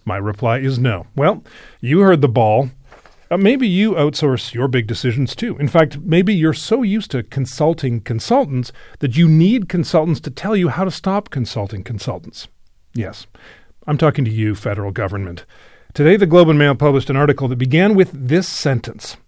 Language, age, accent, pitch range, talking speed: English, 40-59, American, 120-170 Hz, 180 wpm